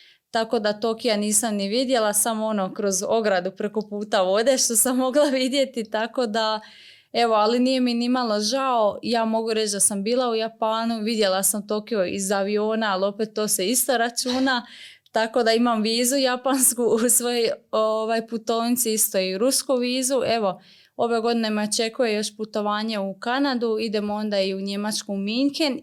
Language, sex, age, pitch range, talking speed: Croatian, female, 20-39, 210-250 Hz, 170 wpm